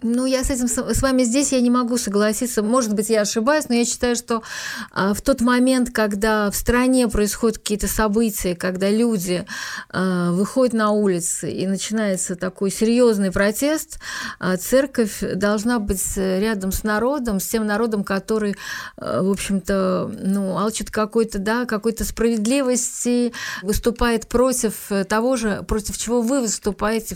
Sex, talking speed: female, 140 wpm